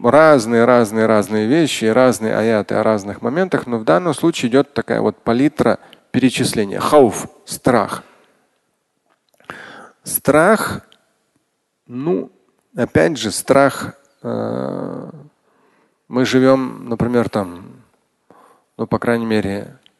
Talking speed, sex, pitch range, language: 100 wpm, male, 100-120 Hz, Russian